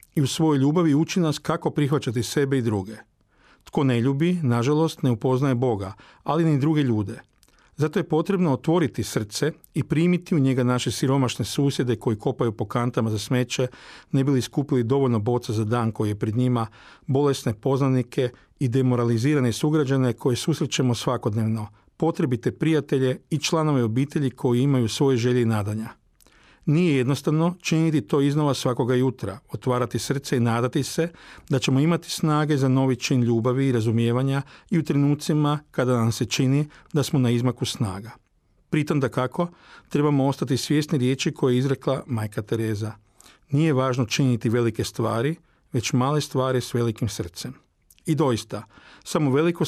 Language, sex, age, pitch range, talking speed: Croatian, male, 40-59, 120-150 Hz, 160 wpm